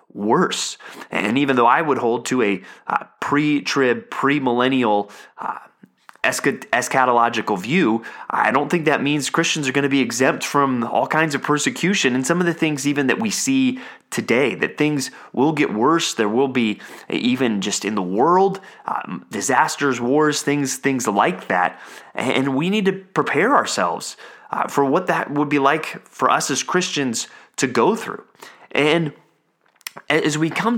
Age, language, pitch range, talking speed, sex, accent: 30-49, English, 125-165 Hz, 165 wpm, male, American